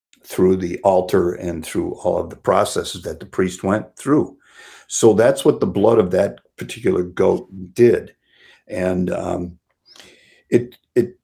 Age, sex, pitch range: 50-69, male, 95-110 Hz